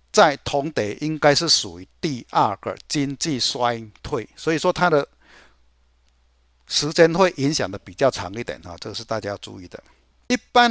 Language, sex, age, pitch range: Chinese, male, 60-79, 110-165 Hz